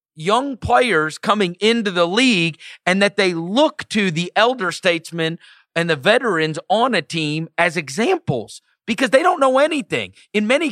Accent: American